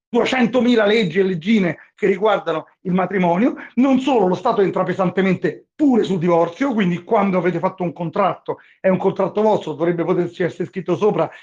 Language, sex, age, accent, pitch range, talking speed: Italian, male, 40-59, native, 185-245 Hz, 170 wpm